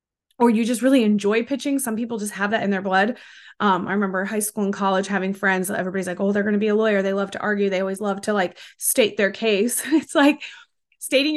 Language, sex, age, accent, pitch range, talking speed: English, female, 20-39, American, 210-255 Hz, 250 wpm